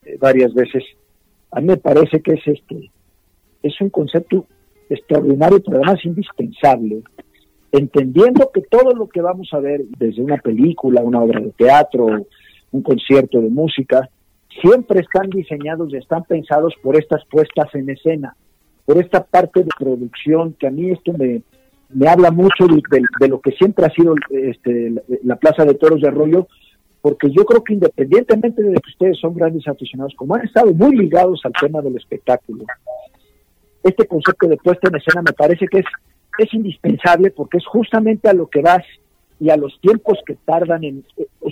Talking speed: 175 wpm